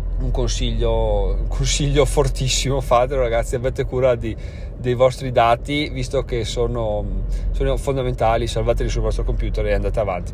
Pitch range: 115-160 Hz